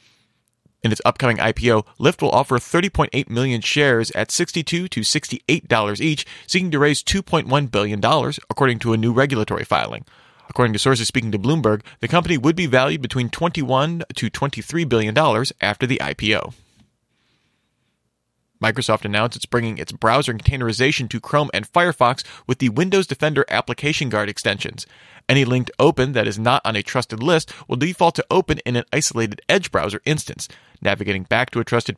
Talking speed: 165 wpm